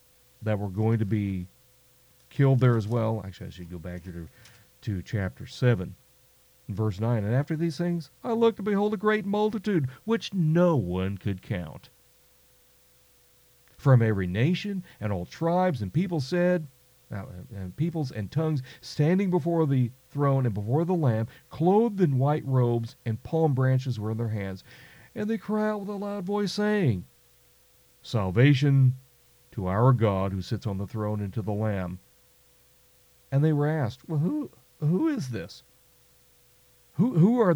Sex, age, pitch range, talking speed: male, 40-59, 110-165 Hz, 165 wpm